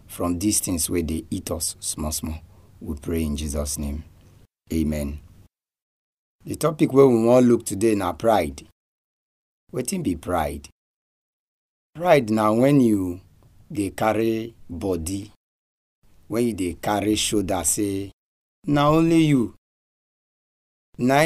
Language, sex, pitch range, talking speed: English, male, 85-125 Hz, 125 wpm